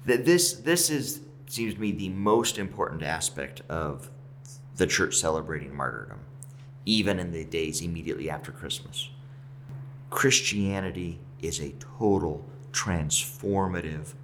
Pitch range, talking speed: 95-135 Hz, 115 wpm